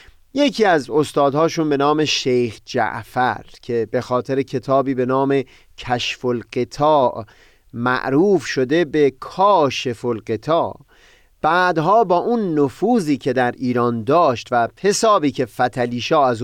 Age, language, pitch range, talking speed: 30-49, Persian, 125-160 Hz, 115 wpm